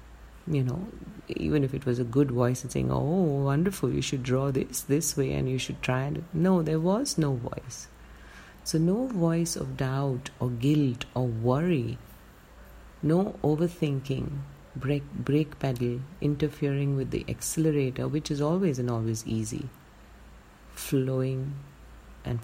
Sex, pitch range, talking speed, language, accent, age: female, 125-160 Hz, 145 wpm, English, Indian, 50-69